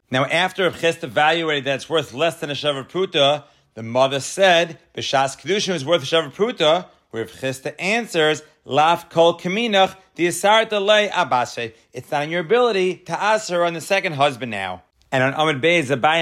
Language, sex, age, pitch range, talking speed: English, male, 40-59, 130-170 Hz, 165 wpm